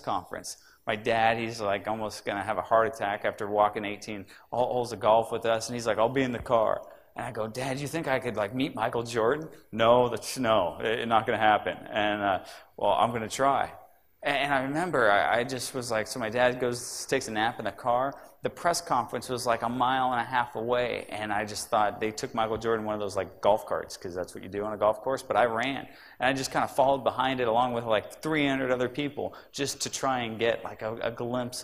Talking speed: 245 wpm